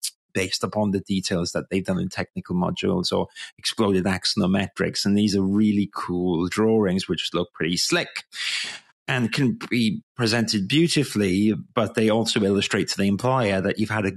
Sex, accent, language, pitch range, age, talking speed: male, British, English, 100-130 Hz, 30-49, 165 wpm